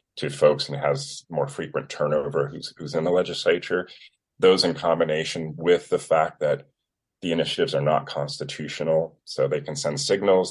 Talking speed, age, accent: 165 wpm, 30-49, American